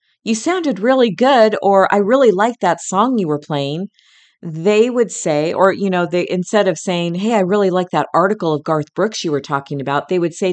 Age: 40-59